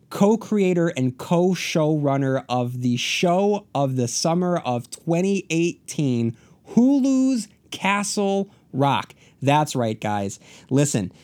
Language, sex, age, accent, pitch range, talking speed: English, male, 30-49, American, 115-150 Hz, 95 wpm